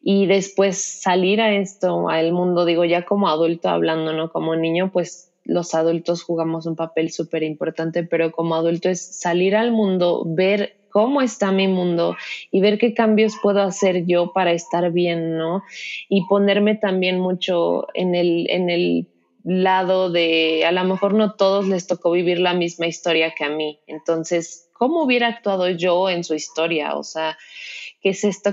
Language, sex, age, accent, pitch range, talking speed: Spanish, female, 20-39, Mexican, 170-200 Hz, 175 wpm